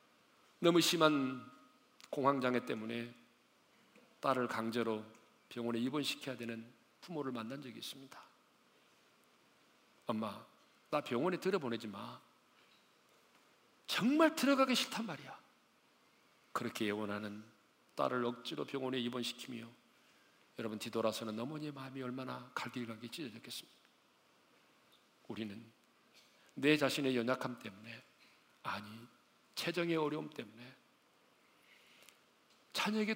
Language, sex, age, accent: Korean, male, 40-59, native